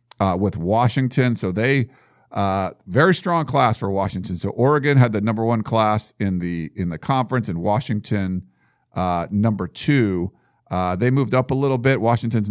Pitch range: 100-125 Hz